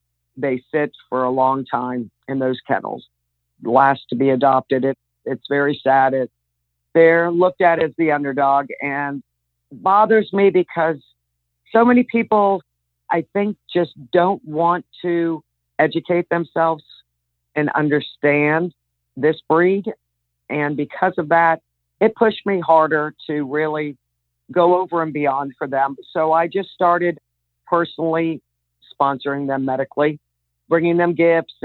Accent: American